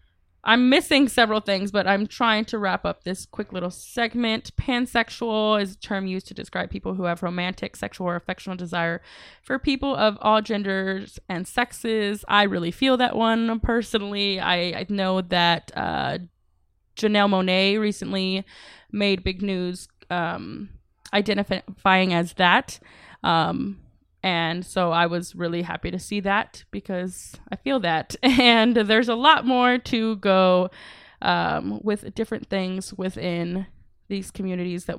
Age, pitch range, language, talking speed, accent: 20-39, 180-225 Hz, English, 145 wpm, American